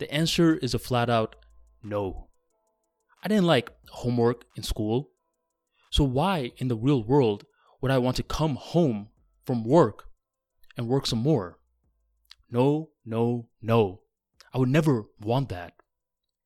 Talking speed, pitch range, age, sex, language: 140 wpm, 110-145 Hz, 20-39, male, English